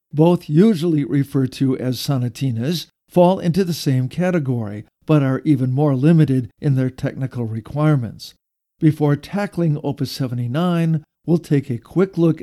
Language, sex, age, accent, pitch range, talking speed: English, male, 50-69, American, 135-170 Hz, 140 wpm